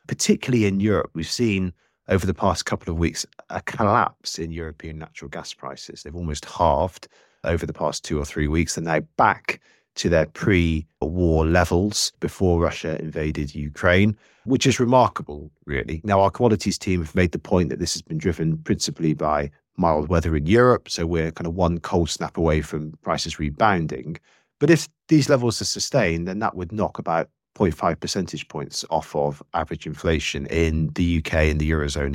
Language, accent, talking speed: English, British, 185 wpm